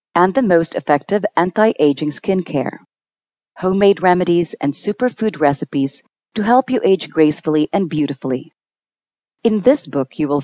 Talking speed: 140 wpm